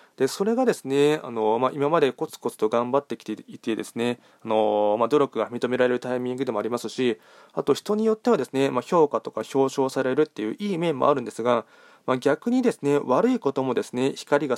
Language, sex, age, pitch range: Japanese, male, 20-39, 120-150 Hz